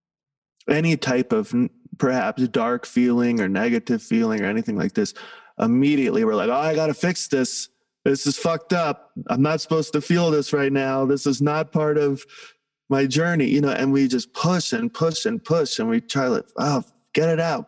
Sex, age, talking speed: male, 20-39, 205 wpm